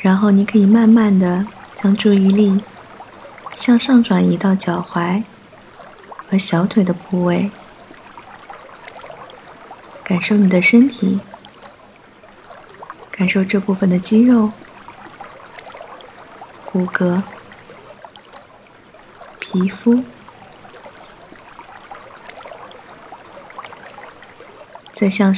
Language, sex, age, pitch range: Chinese, female, 20-39, 190-225 Hz